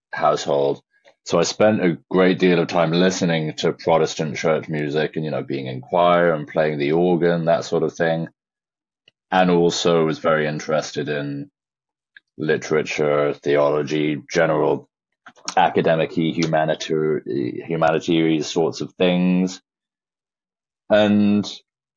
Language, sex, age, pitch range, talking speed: English, male, 30-49, 80-95 Hz, 120 wpm